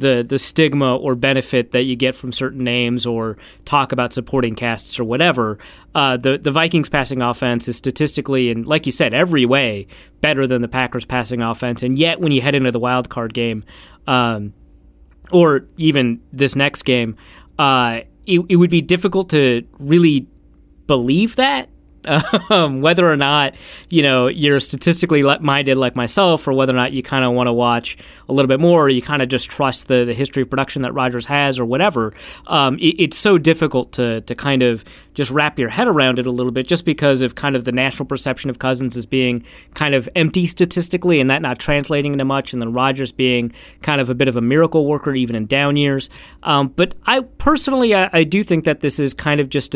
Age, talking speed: 30-49, 210 wpm